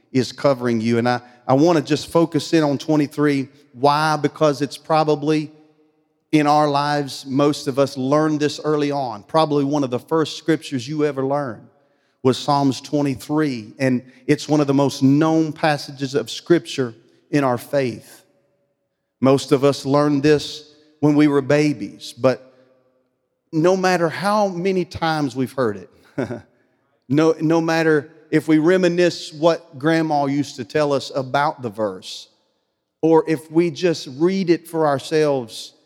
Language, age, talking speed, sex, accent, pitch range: English, 40-59, 155 wpm, male, American, 130-155 Hz